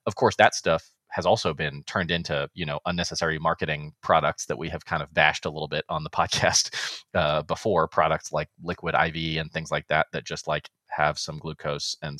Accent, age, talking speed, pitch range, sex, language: American, 30-49, 210 wpm, 80-100 Hz, male, English